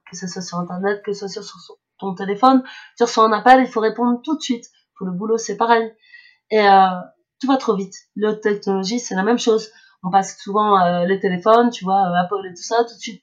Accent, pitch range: French, 185-225 Hz